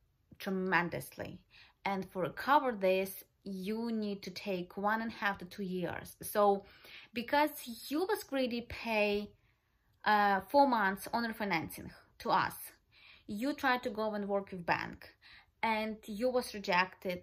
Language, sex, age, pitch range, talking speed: English, female, 20-39, 180-215 Hz, 145 wpm